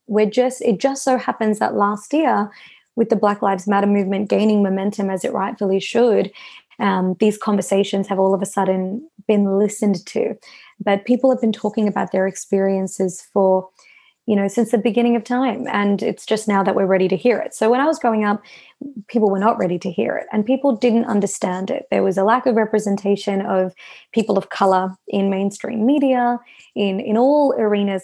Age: 20-39